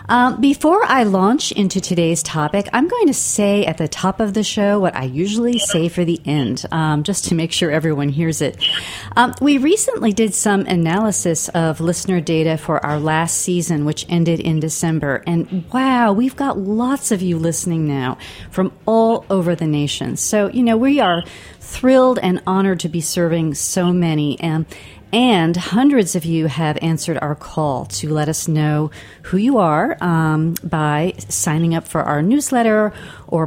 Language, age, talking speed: English, 40-59, 180 wpm